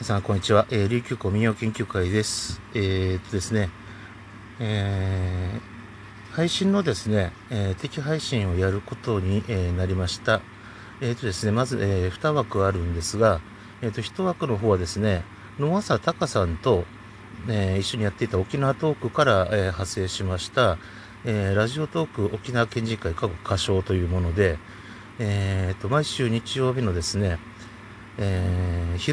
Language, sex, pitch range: Japanese, male, 95-120 Hz